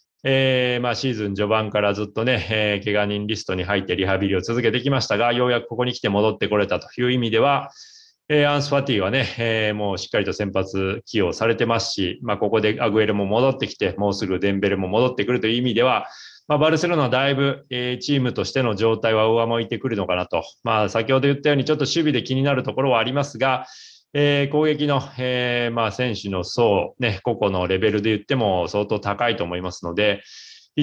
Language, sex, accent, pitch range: Japanese, male, native, 105-135 Hz